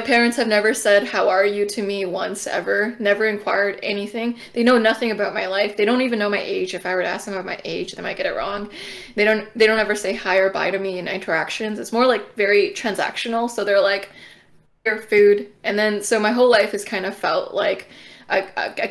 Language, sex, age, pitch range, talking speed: English, female, 20-39, 195-240 Hz, 250 wpm